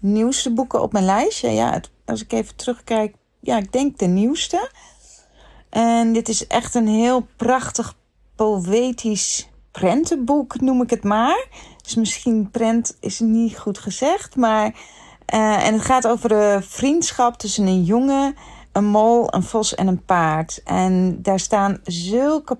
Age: 40-59